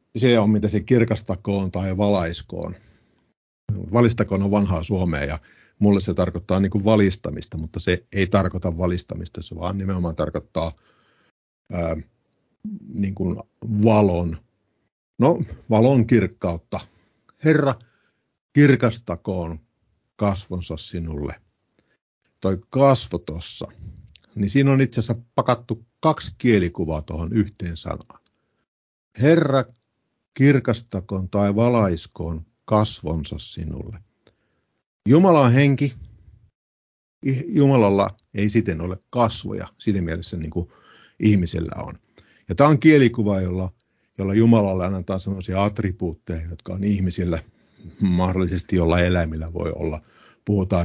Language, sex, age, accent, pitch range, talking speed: Finnish, male, 50-69, native, 90-115 Hz, 105 wpm